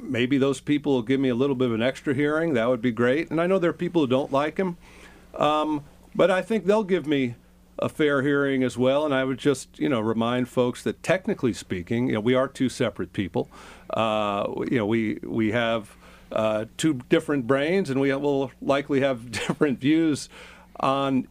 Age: 40-59